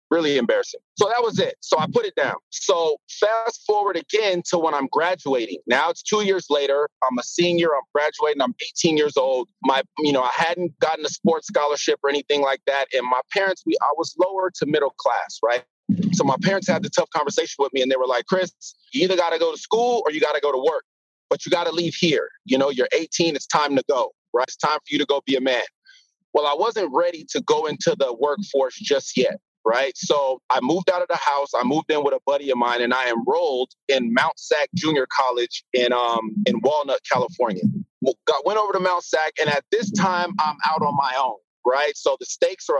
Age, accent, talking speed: 30-49, American, 235 wpm